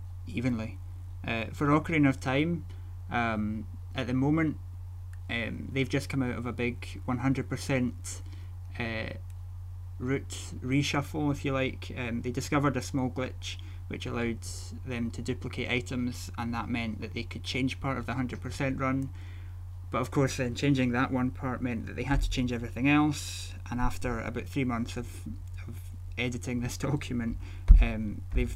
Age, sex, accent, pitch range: 20-39, male, British, 90-125 Hz